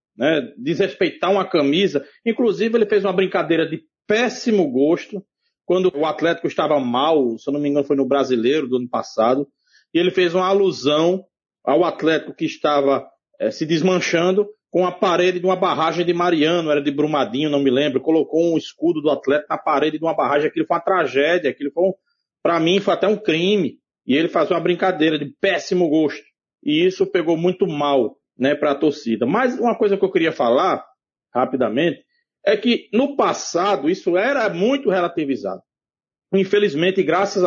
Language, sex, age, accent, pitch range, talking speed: Portuguese, male, 40-59, Brazilian, 160-220 Hz, 180 wpm